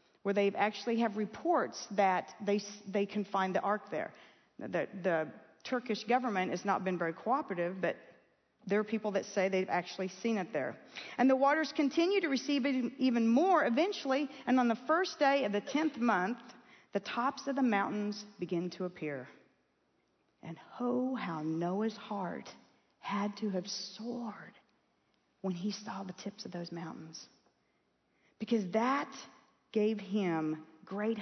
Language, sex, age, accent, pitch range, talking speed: English, female, 40-59, American, 195-255 Hz, 155 wpm